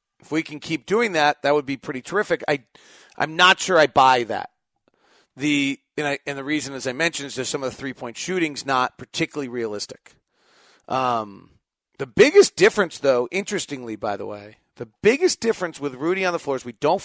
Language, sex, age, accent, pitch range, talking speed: English, male, 40-59, American, 140-175 Hz, 200 wpm